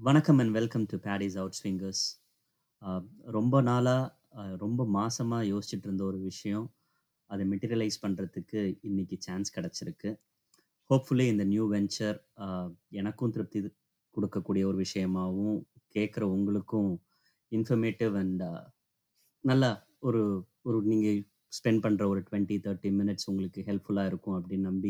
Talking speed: 115 wpm